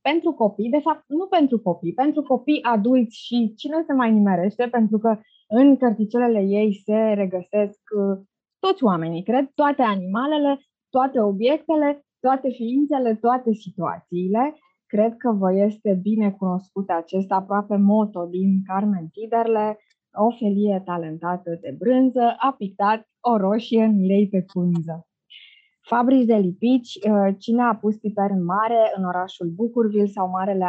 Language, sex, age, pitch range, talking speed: Romanian, female, 20-39, 190-250 Hz, 140 wpm